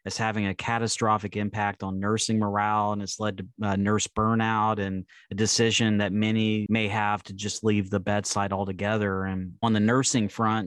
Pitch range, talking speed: 100-110 Hz, 185 wpm